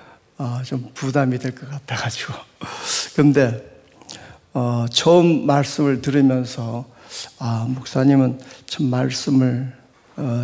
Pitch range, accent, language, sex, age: 125-140 Hz, native, Korean, male, 50-69